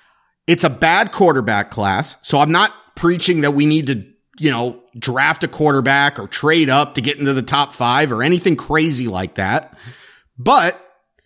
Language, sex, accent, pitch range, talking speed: English, male, American, 145-210 Hz, 175 wpm